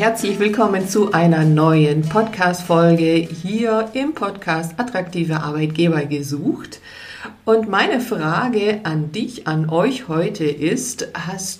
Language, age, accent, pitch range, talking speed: German, 50-69, German, 155-190 Hz, 115 wpm